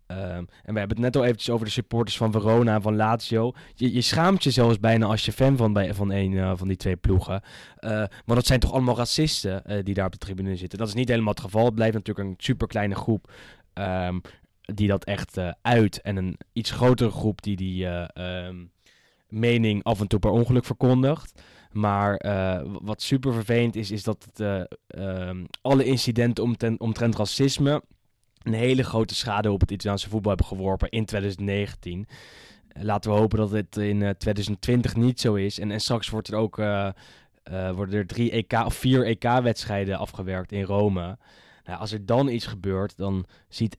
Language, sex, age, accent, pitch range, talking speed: English, male, 10-29, Dutch, 100-115 Hz, 190 wpm